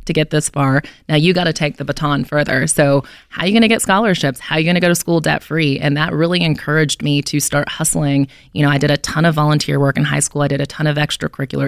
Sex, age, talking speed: female, 20-39, 290 wpm